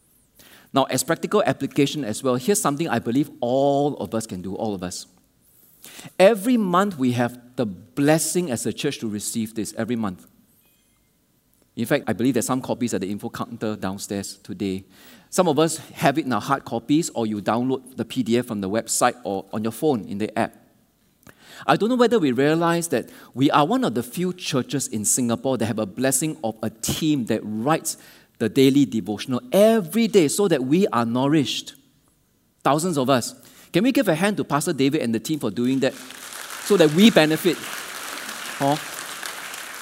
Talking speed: 190 wpm